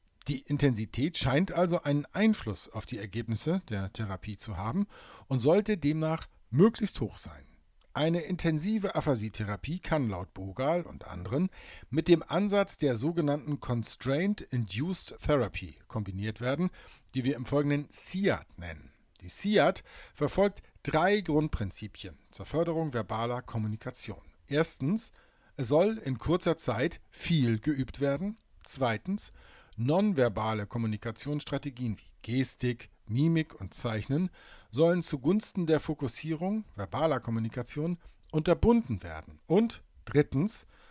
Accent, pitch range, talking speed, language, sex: German, 110-165 Hz, 115 wpm, German, male